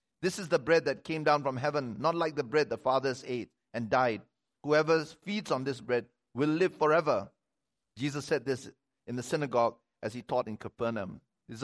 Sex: male